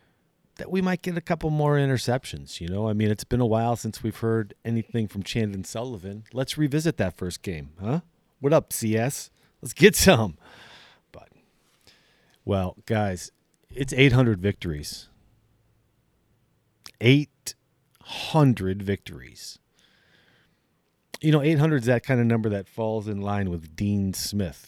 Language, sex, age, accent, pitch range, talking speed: English, male, 40-59, American, 95-125 Hz, 140 wpm